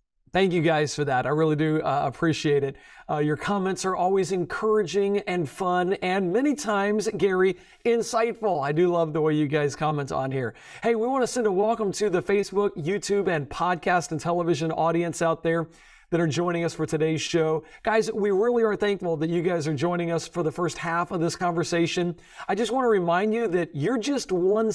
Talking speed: 205 wpm